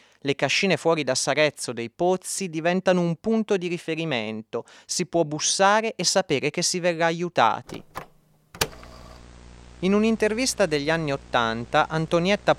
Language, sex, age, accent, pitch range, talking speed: Italian, male, 30-49, native, 125-190 Hz, 130 wpm